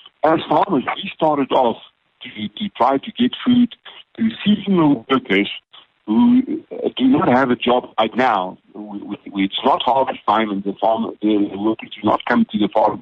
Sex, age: male, 50-69